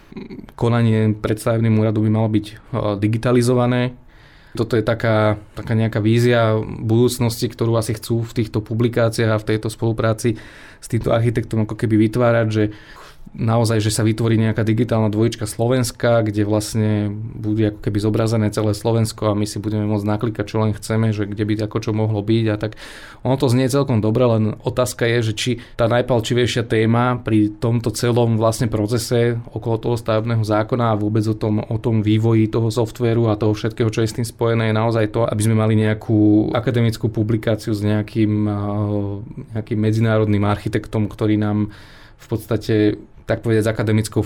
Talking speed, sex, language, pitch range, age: 170 wpm, male, Slovak, 105-115 Hz, 20-39